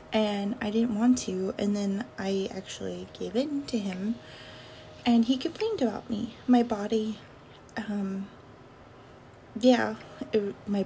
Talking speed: 135 wpm